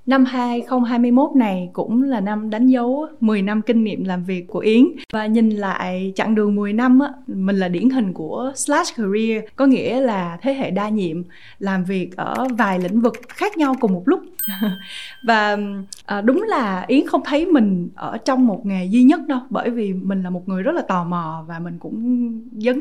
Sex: female